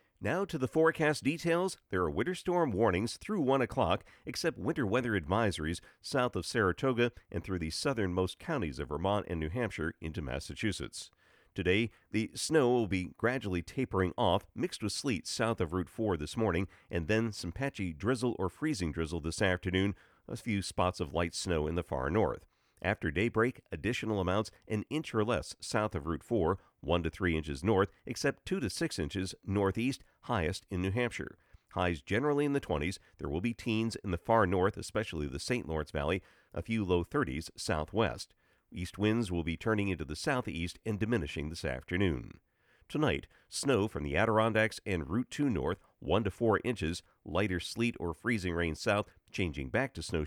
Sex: male